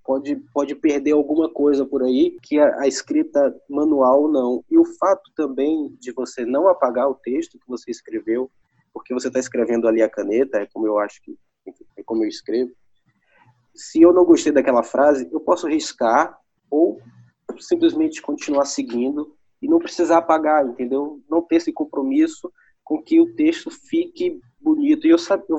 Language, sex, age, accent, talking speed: Portuguese, male, 20-39, Brazilian, 170 wpm